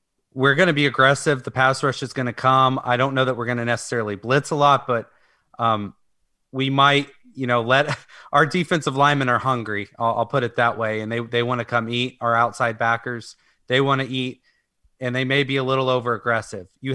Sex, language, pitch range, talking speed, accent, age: male, English, 115-135 Hz, 225 wpm, American, 30-49